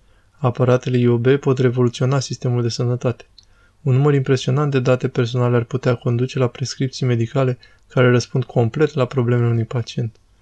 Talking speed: 150 wpm